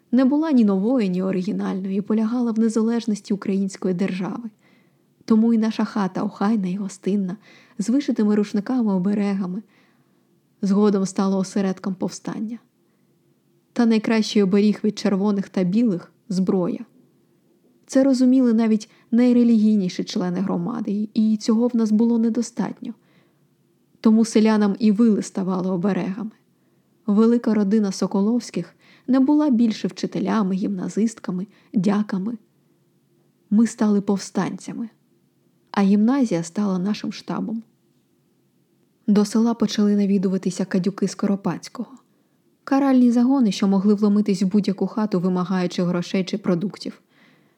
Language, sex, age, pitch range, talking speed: Ukrainian, female, 20-39, 195-230 Hz, 110 wpm